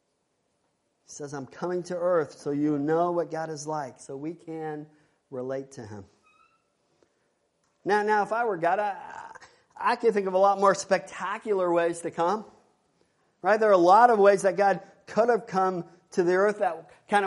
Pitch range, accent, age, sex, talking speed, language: 150-185 Hz, American, 50-69, male, 190 wpm, English